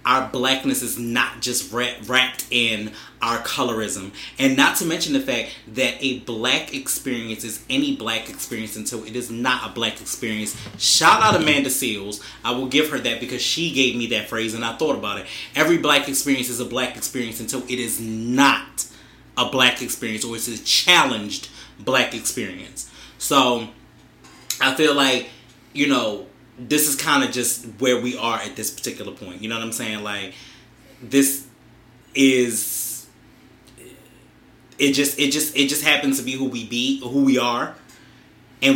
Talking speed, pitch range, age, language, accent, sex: 175 wpm, 115-140 Hz, 20-39, English, American, male